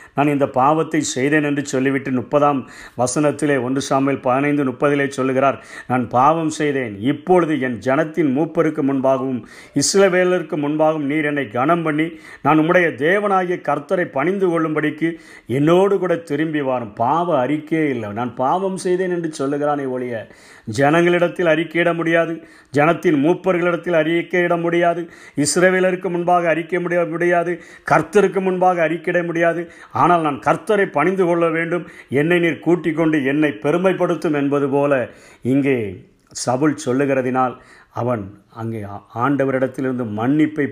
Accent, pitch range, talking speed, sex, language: native, 135-170 Hz, 120 wpm, male, Tamil